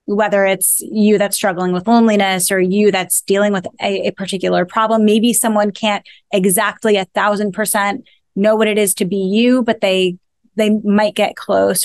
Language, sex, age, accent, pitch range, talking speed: English, female, 20-39, American, 190-220 Hz, 180 wpm